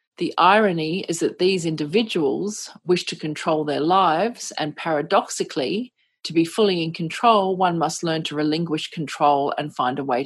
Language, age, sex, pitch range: English, 40-59, female, 155-205 Hz